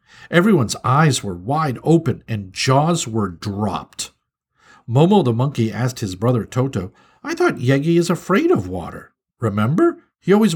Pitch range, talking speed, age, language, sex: 110-165 Hz, 150 wpm, 50-69, English, male